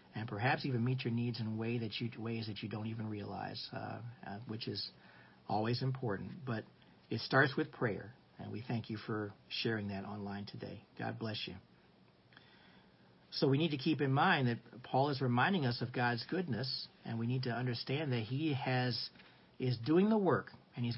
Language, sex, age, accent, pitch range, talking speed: English, male, 50-69, American, 120-155 Hz, 195 wpm